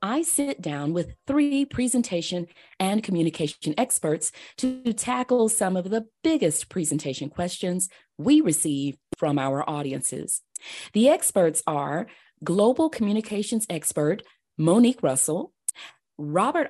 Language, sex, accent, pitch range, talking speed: English, female, American, 150-220 Hz, 110 wpm